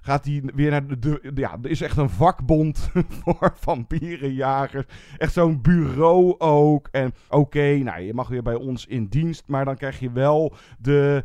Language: Dutch